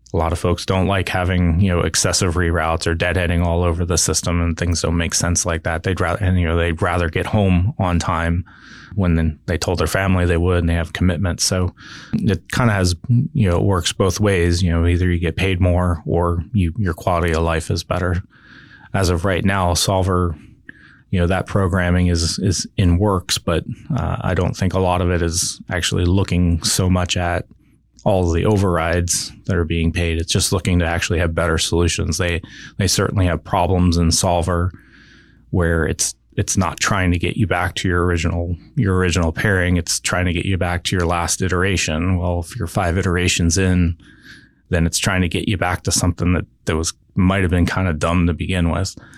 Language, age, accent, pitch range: English, 20-39, American, 85-95 Hz